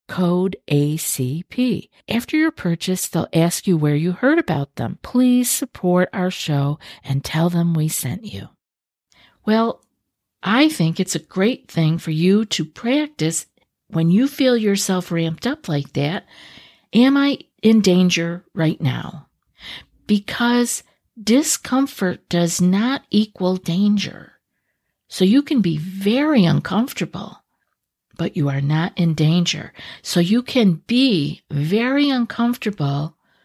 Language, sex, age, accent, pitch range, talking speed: English, female, 50-69, American, 160-220 Hz, 130 wpm